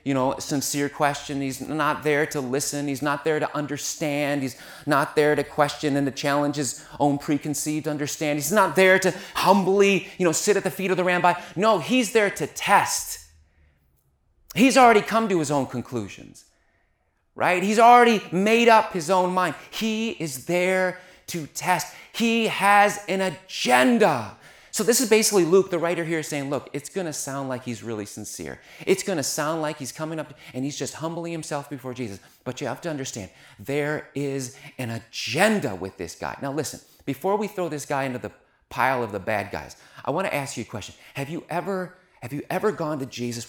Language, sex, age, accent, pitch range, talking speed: English, male, 30-49, American, 130-185 Hz, 200 wpm